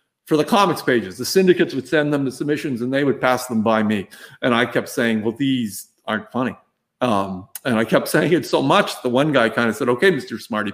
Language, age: English, 50-69